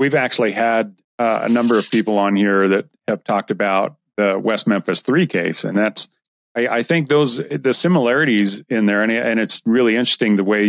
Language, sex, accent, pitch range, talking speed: English, male, American, 100-120 Hz, 200 wpm